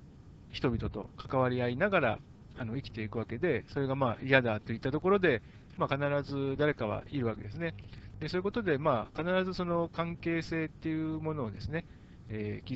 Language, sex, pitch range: Japanese, male, 115-165 Hz